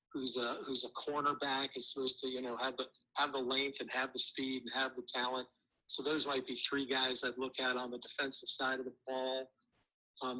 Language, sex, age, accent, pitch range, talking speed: English, male, 50-69, American, 125-140 Hz, 230 wpm